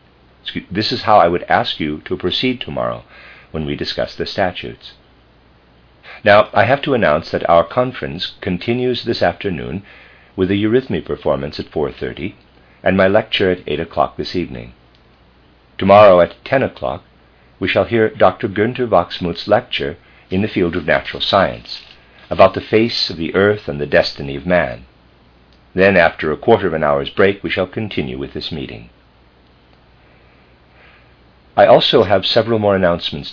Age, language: 50-69, English